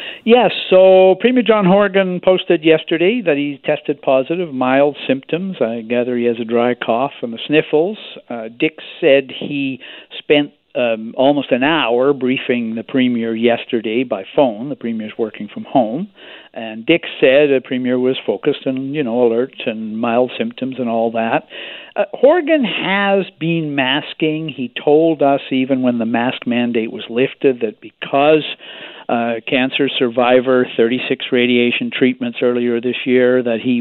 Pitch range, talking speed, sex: 120-155 Hz, 155 wpm, male